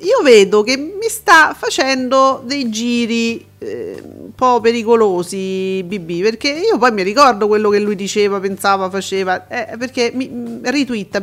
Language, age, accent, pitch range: Italian, 40-59, native, 205-265 Hz